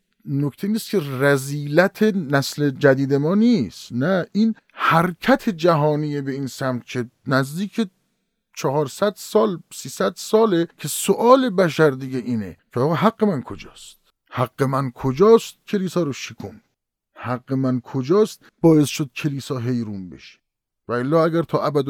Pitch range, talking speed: 130-175 Hz, 130 wpm